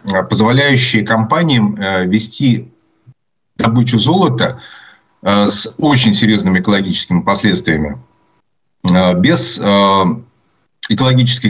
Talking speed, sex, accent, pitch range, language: 65 wpm, male, native, 100-130 Hz, Russian